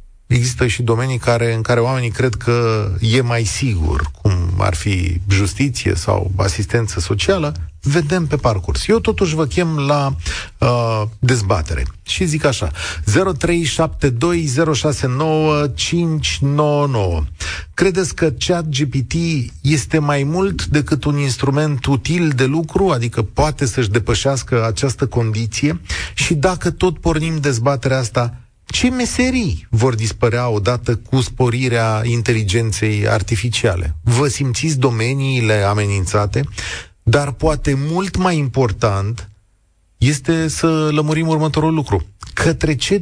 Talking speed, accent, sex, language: 115 wpm, native, male, Romanian